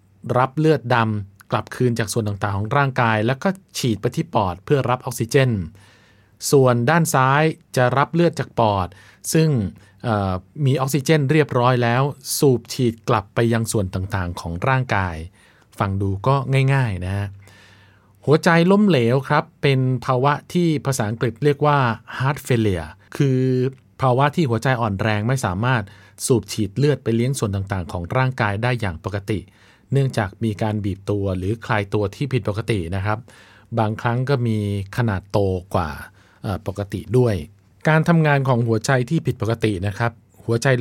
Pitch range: 105-130 Hz